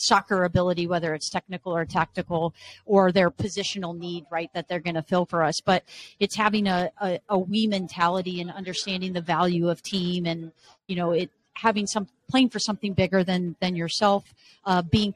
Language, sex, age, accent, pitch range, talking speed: English, female, 30-49, American, 175-200 Hz, 190 wpm